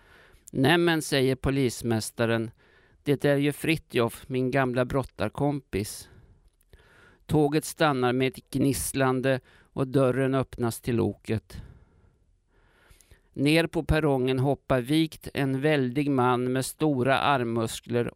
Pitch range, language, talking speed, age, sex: 110-140 Hz, Swedish, 100 wpm, 50-69, male